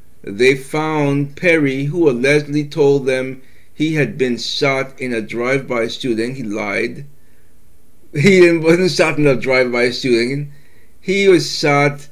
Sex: male